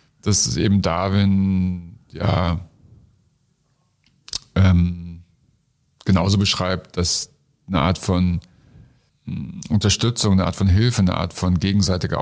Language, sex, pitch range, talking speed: German, male, 90-110 Hz, 105 wpm